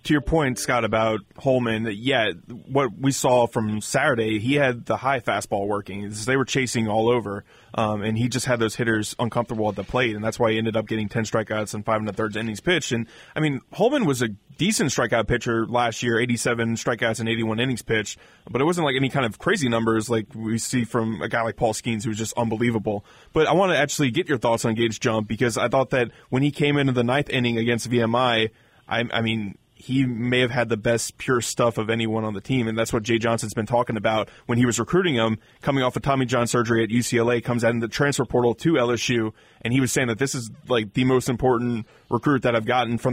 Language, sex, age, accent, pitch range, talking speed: English, male, 20-39, American, 115-130 Hz, 245 wpm